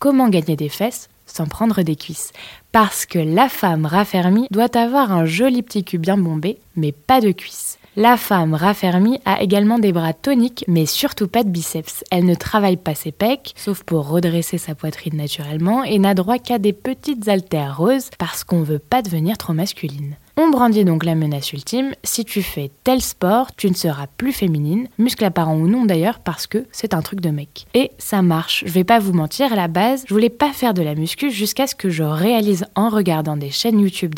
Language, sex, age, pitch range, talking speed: French, female, 20-39, 165-225 Hz, 215 wpm